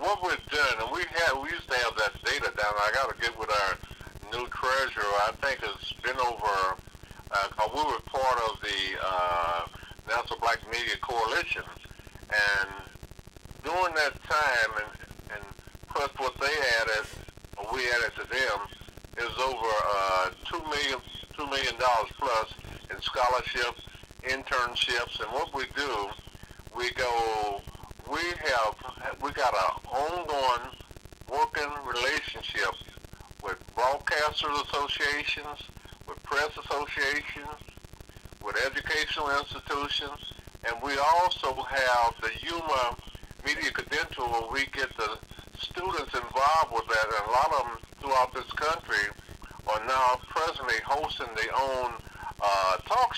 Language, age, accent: English, 50-69, American